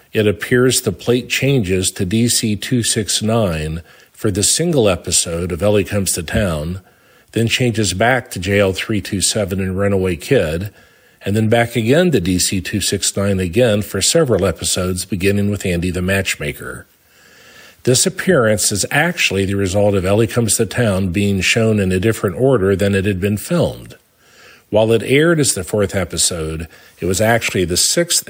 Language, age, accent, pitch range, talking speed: English, 50-69, American, 95-115 Hz, 155 wpm